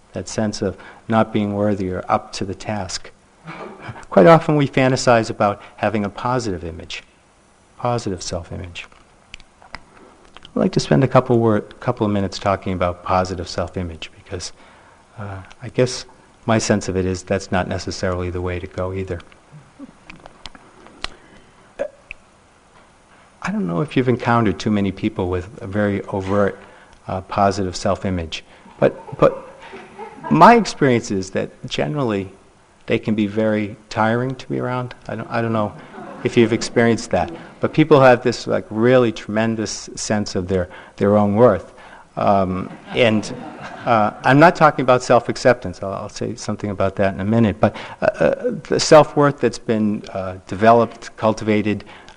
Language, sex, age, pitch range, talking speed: English, male, 50-69, 95-125 Hz, 155 wpm